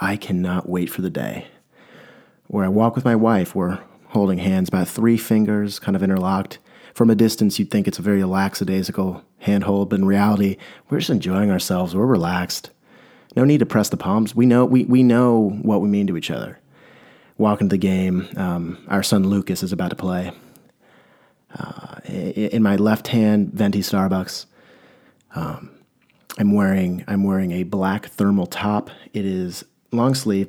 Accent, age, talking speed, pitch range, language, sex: American, 30-49, 175 wpm, 95-115 Hz, English, male